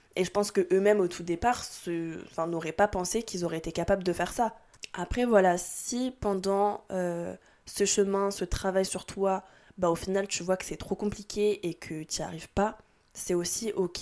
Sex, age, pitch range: female, 20-39, 175-205 Hz